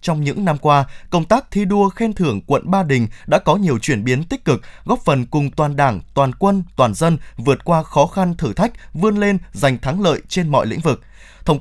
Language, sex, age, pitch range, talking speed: Vietnamese, male, 20-39, 140-195 Hz, 235 wpm